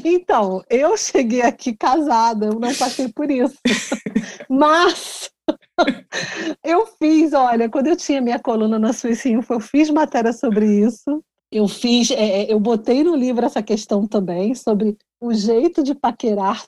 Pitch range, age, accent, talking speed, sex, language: 225-300 Hz, 40-59, Brazilian, 150 wpm, female, Portuguese